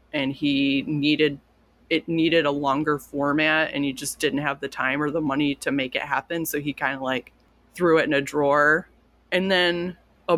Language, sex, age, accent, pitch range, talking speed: English, female, 20-39, American, 145-175 Hz, 200 wpm